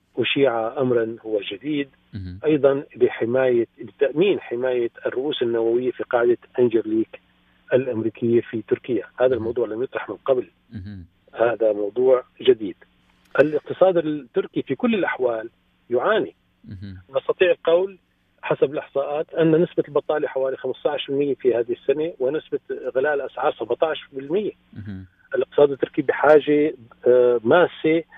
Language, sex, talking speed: Arabic, male, 105 wpm